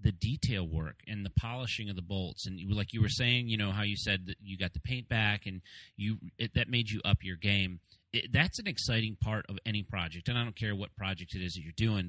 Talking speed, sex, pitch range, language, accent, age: 265 wpm, male, 95-110 Hz, English, American, 30-49